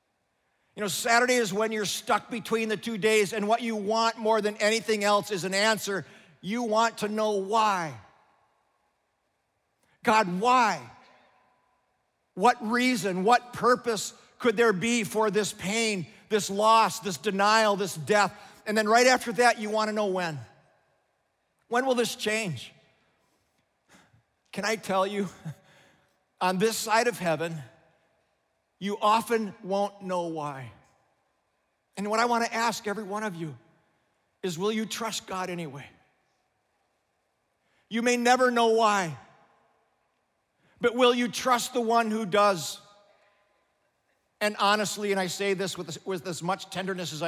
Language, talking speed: English, 140 wpm